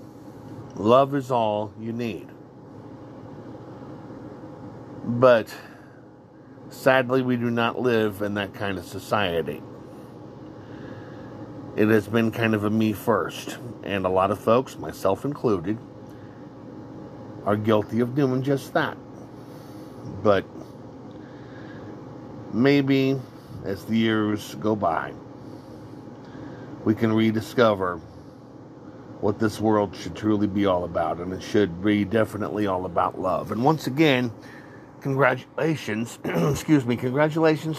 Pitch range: 105-140 Hz